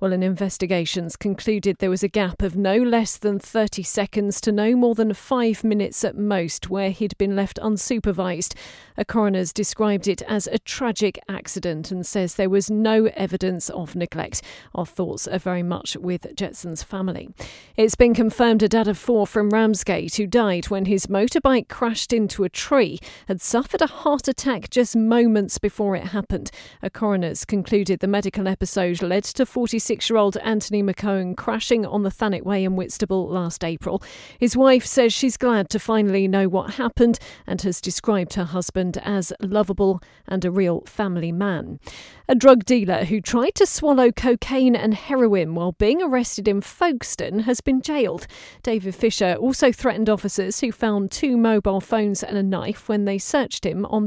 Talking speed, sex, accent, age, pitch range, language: 175 wpm, female, British, 40-59, 190-230 Hz, English